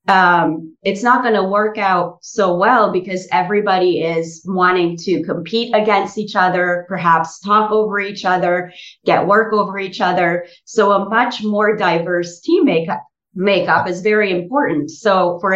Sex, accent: female, American